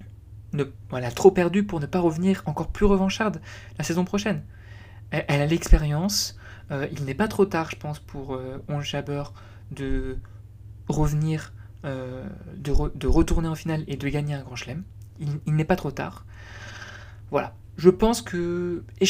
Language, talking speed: French, 175 wpm